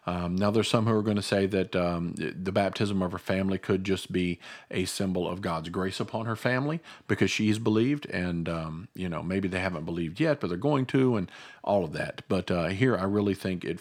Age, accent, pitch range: 50-69, American, 90-110 Hz